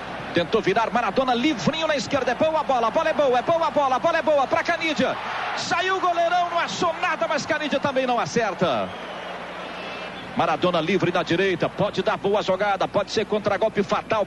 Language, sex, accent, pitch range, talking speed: Portuguese, male, Brazilian, 250-315 Hz, 200 wpm